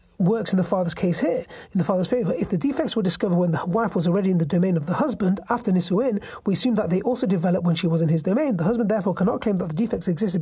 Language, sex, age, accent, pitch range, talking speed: English, male, 30-49, British, 180-225 Hz, 280 wpm